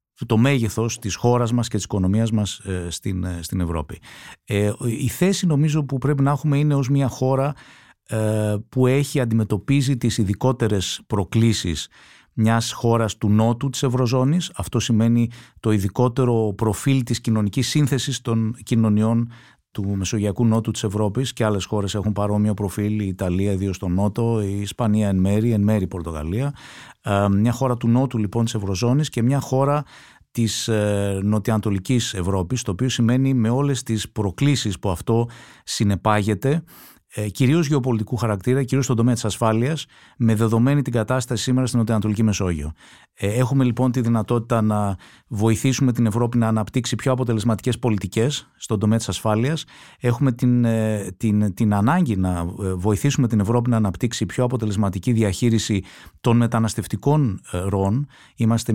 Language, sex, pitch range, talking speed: Greek, male, 105-125 Hz, 145 wpm